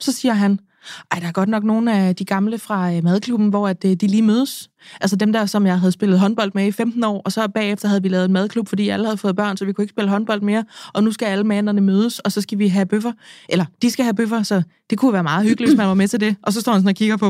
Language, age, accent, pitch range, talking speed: Danish, 20-39, native, 195-240 Hz, 300 wpm